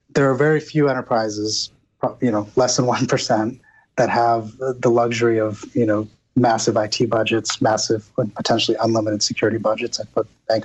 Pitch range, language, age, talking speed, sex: 110-125 Hz, English, 30-49, 165 wpm, male